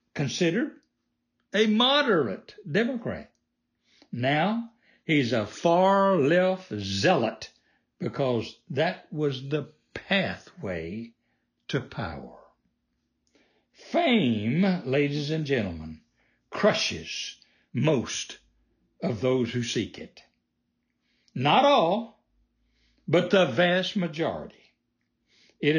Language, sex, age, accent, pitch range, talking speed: English, male, 60-79, American, 115-180 Hz, 80 wpm